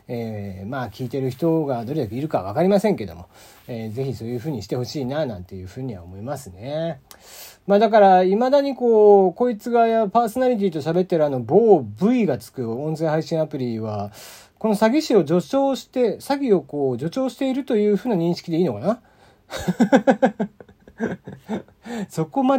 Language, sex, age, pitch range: Japanese, male, 40-59, 120-200 Hz